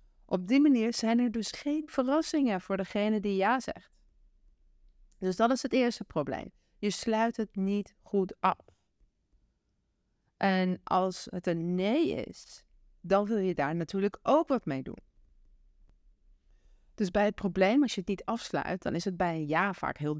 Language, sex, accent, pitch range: Dutch, female, Dutch, 180-235 Hz